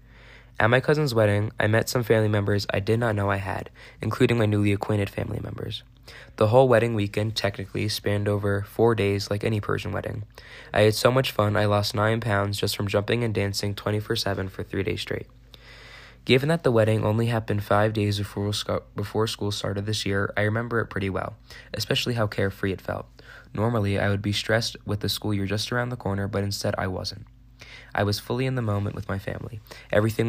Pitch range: 100-115 Hz